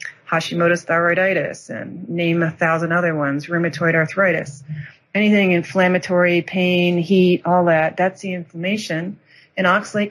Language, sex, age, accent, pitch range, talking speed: English, female, 40-59, American, 160-190 Hz, 125 wpm